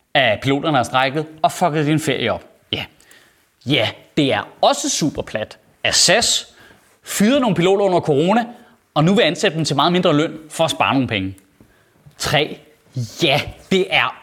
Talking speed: 170 wpm